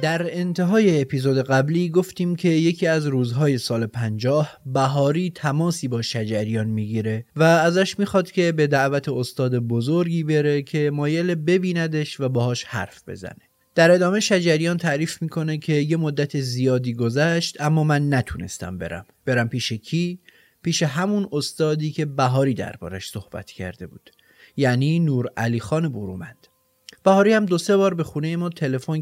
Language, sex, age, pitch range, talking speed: Persian, male, 30-49, 120-170 Hz, 150 wpm